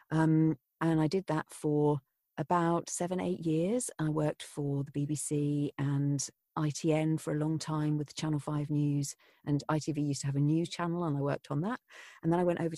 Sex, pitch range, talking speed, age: female, 145-175 Hz, 200 wpm, 40-59